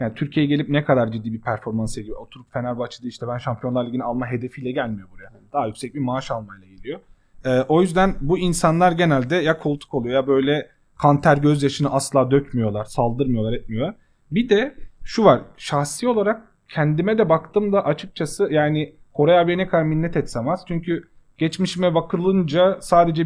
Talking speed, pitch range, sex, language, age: 170 wpm, 125-170 Hz, male, Turkish, 30-49